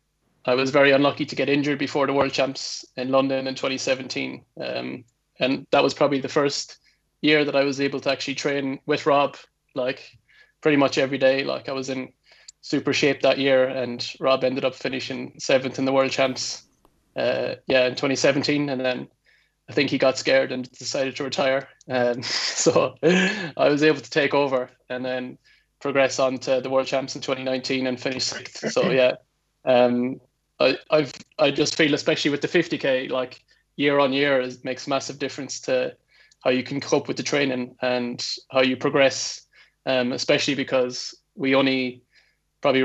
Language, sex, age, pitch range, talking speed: English, male, 20-39, 130-140 Hz, 180 wpm